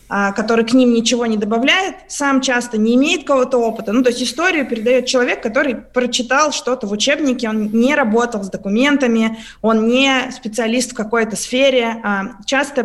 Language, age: Russian, 20-39